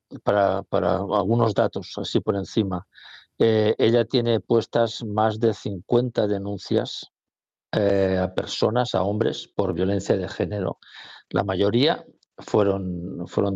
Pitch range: 100-120 Hz